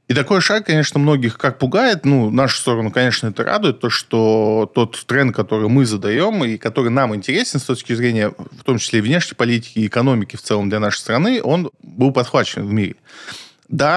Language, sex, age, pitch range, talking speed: Russian, male, 20-39, 110-135 Hz, 195 wpm